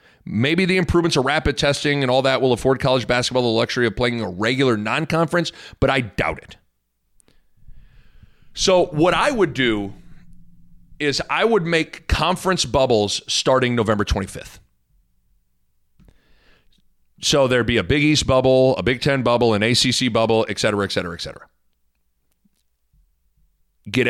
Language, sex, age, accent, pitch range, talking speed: English, male, 40-59, American, 115-155 Hz, 145 wpm